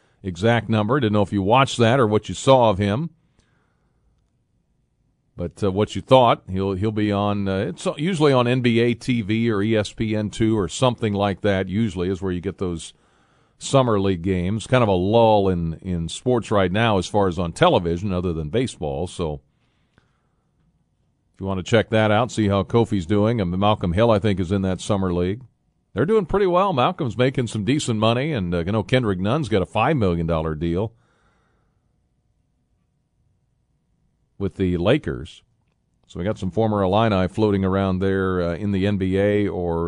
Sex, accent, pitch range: male, American, 95-120 Hz